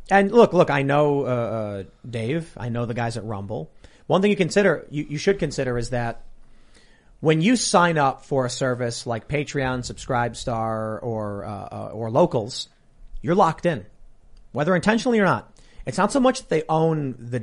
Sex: male